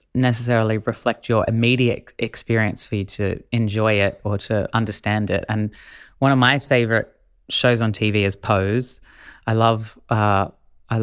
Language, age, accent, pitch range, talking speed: English, 20-39, Australian, 110-125 Hz, 150 wpm